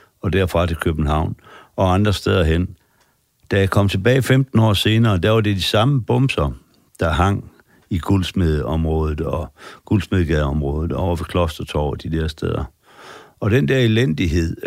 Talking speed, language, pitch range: 155 wpm, Danish, 85-110 Hz